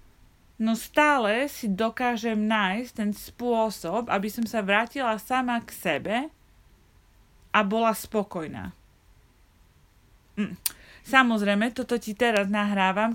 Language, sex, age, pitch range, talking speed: Slovak, female, 30-49, 190-230 Hz, 105 wpm